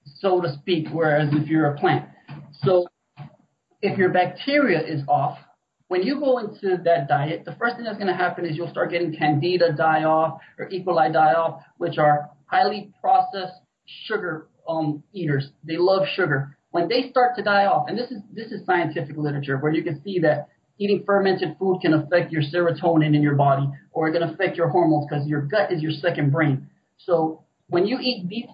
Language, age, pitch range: English, 30-49, 155-185 Hz